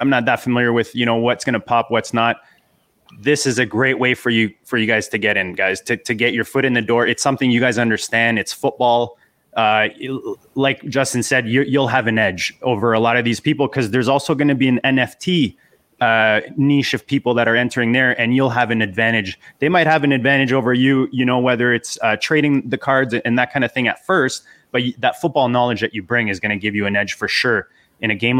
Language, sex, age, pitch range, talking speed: English, male, 20-39, 115-135 Hz, 250 wpm